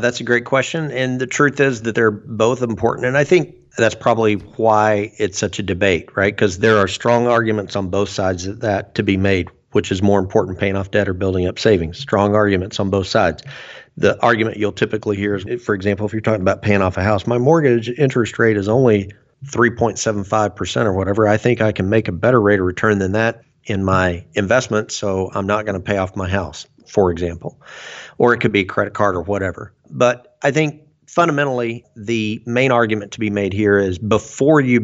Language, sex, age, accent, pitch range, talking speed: English, male, 50-69, American, 100-115 Hz, 215 wpm